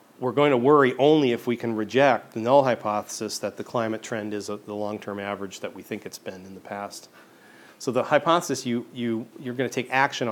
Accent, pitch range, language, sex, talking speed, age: American, 110-135 Hz, English, male, 210 wpm, 40-59